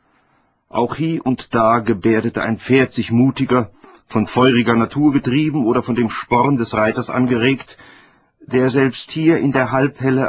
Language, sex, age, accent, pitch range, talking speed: German, male, 50-69, German, 110-130 Hz, 150 wpm